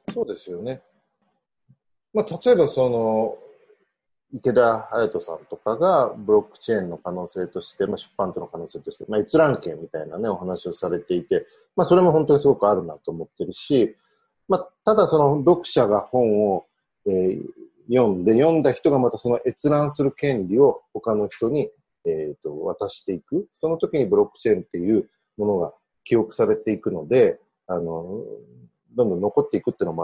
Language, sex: Japanese, male